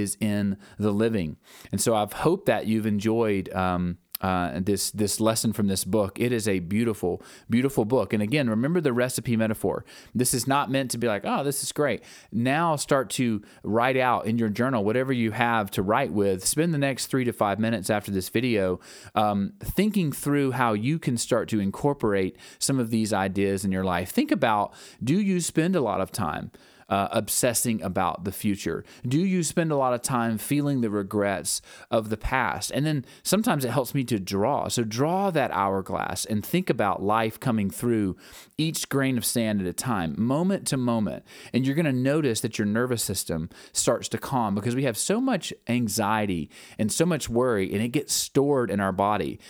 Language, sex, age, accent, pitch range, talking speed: English, male, 30-49, American, 100-135 Hz, 200 wpm